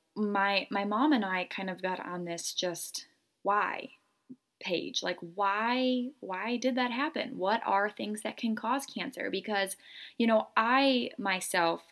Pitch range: 180-250 Hz